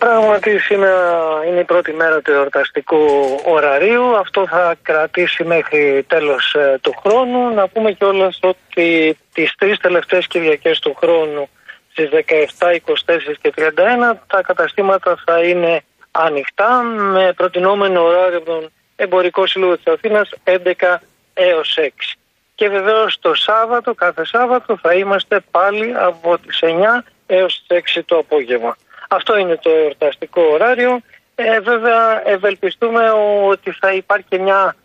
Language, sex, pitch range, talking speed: Greek, male, 170-215 Hz, 130 wpm